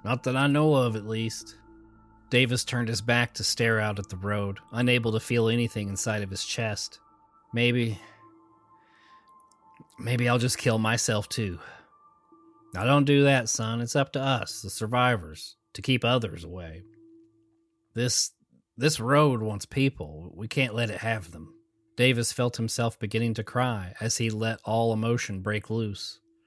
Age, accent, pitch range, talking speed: 30-49, American, 105-125 Hz, 160 wpm